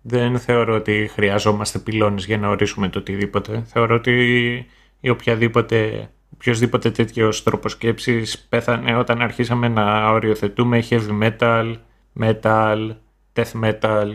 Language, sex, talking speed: Greek, male, 110 wpm